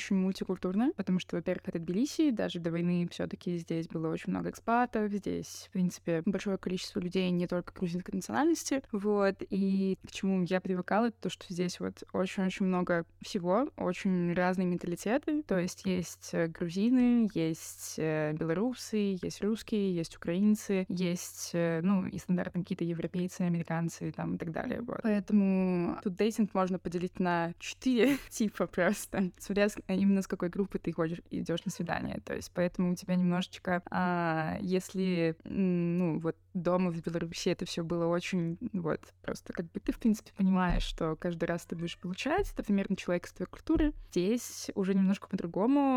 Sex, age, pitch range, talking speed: female, 20-39, 175-210 Hz, 165 wpm